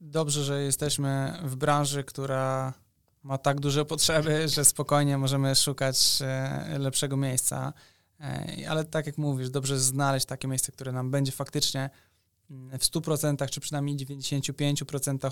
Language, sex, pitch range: Polish, male, 135-150 Hz